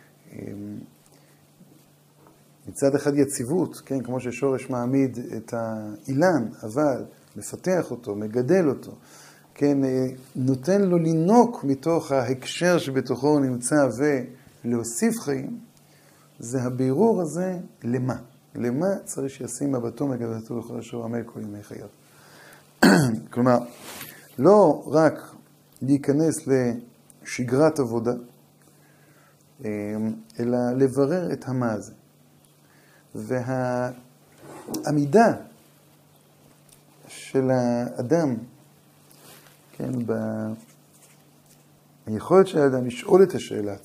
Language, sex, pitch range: Hebrew, male, 120-145 Hz